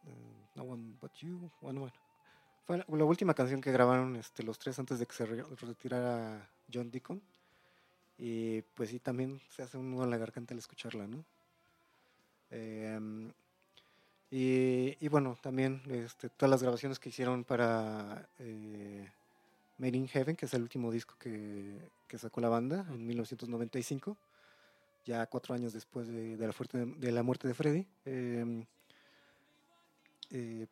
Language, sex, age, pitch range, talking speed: Spanish, male, 30-49, 115-140 Hz, 155 wpm